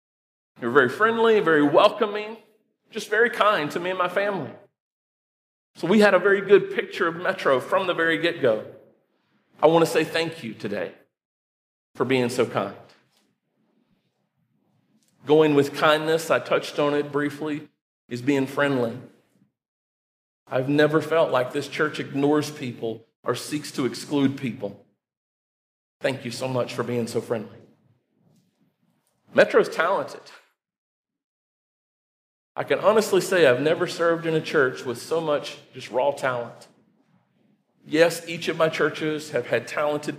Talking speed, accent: 145 wpm, American